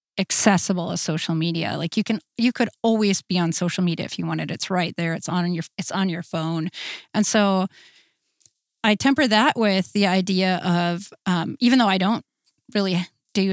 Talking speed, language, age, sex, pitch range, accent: 190 wpm, English, 30-49, female, 175-205 Hz, American